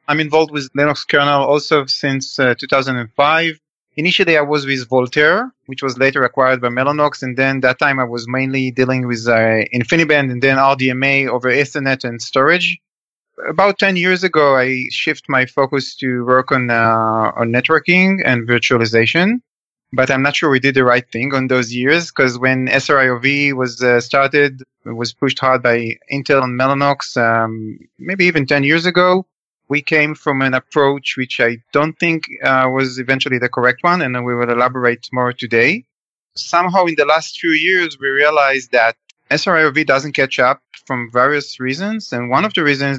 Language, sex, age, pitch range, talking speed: English, male, 30-49, 125-150 Hz, 180 wpm